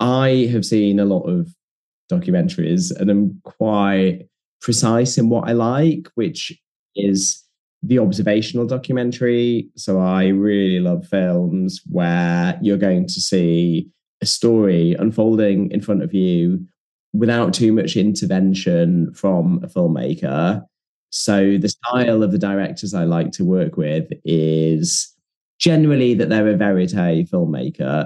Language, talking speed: English, 135 wpm